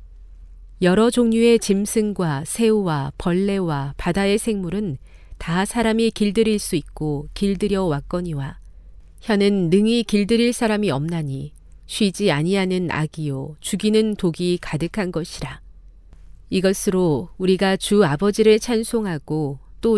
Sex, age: female, 40-59